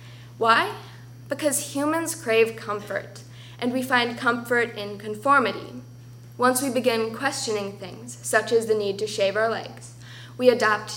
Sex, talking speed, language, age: female, 140 wpm, English, 10-29